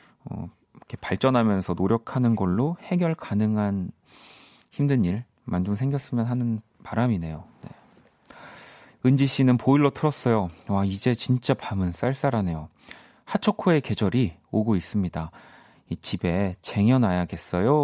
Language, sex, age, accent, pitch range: Korean, male, 40-59, native, 95-130 Hz